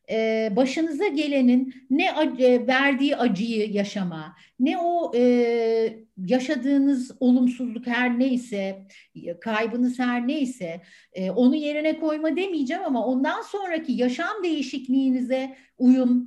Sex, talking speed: female, 90 wpm